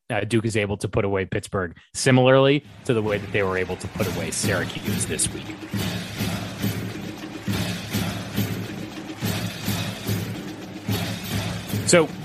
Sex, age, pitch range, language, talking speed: male, 30-49, 105-130 Hz, English, 115 wpm